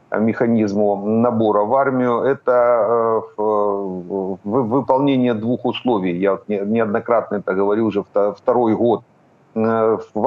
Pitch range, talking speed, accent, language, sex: 105-130 Hz, 110 wpm, native, Ukrainian, male